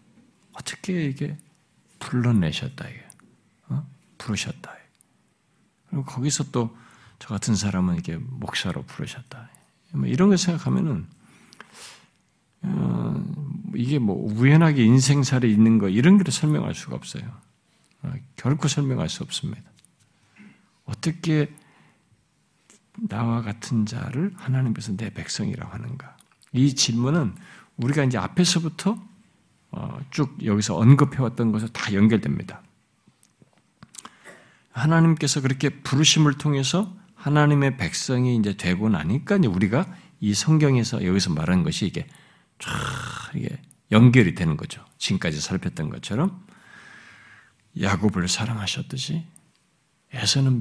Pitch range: 115-165 Hz